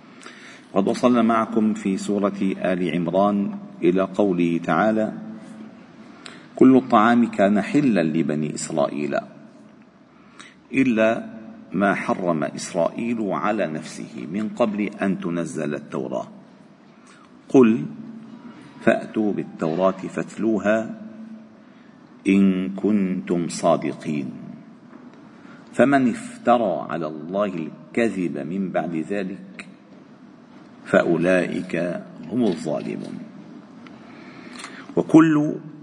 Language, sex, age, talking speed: Arabic, male, 50-69, 75 wpm